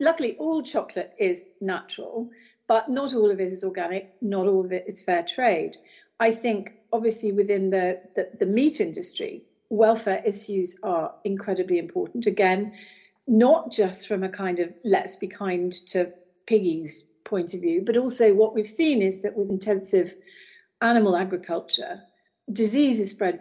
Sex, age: female, 40-59